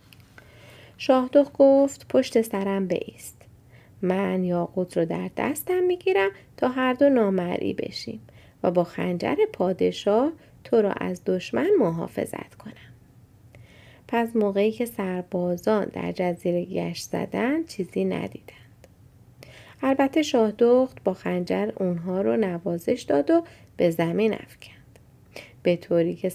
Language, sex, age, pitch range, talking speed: Persian, female, 30-49, 125-215 Hz, 120 wpm